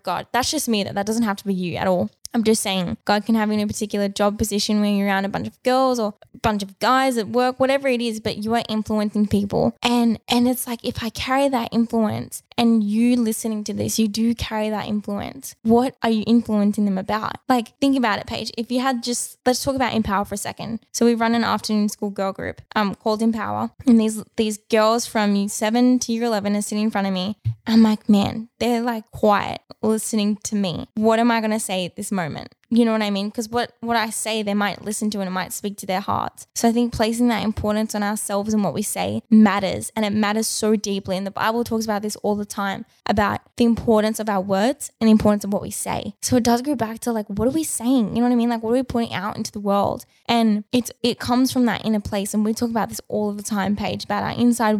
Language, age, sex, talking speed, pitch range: English, 10-29, female, 260 wpm, 205-235 Hz